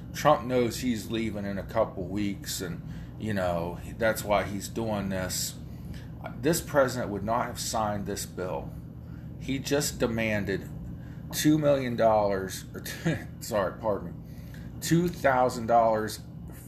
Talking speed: 125 wpm